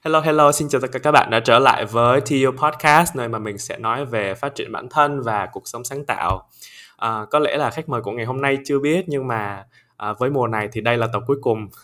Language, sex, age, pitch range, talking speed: Vietnamese, male, 20-39, 105-140 Hz, 270 wpm